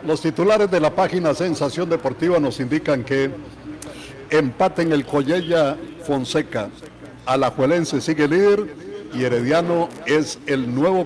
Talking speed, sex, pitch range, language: 125 wpm, male, 140-170 Hz, Spanish